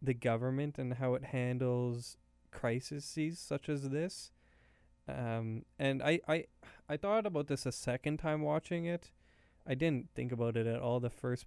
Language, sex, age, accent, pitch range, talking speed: English, male, 20-39, American, 120-150 Hz, 165 wpm